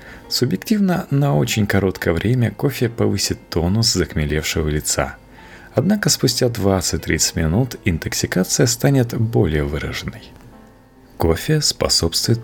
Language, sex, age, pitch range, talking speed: Russian, male, 30-49, 80-125 Hz, 95 wpm